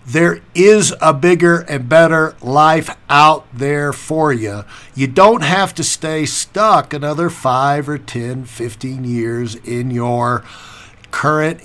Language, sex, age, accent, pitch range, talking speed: English, male, 60-79, American, 145-215 Hz, 135 wpm